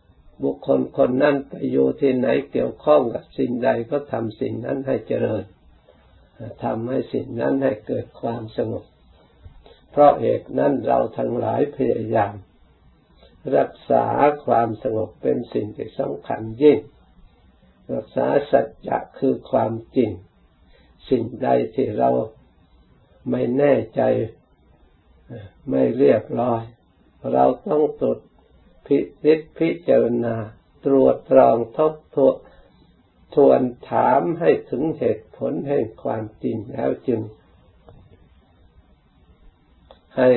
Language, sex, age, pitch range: Thai, male, 60-79, 75-115 Hz